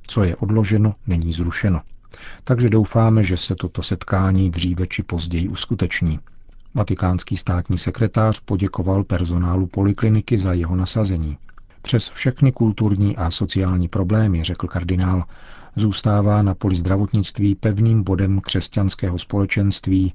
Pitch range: 90-105 Hz